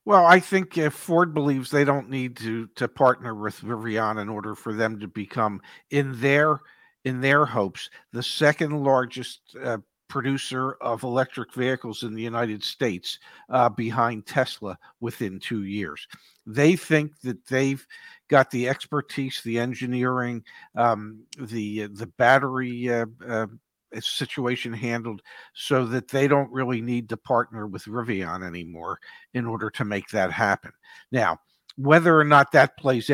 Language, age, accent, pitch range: English, 50-69, American, 115-140 Hz